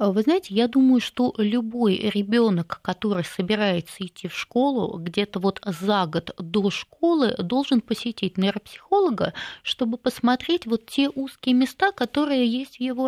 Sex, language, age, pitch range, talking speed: female, Russian, 20-39, 195-250 Hz, 140 wpm